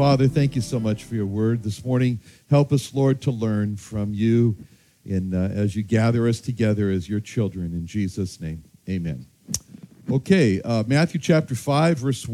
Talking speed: 175 wpm